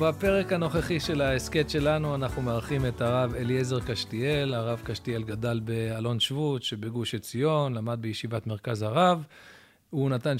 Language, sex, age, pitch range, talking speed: Hebrew, male, 40-59, 115-150 Hz, 140 wpm